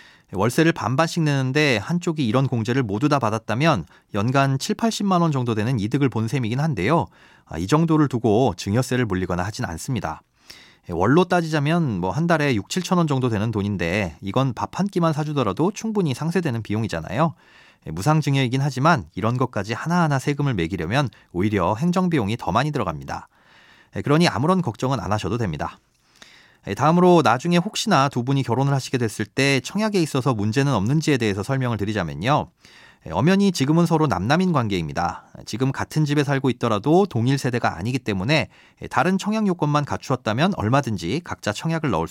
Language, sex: Korean, male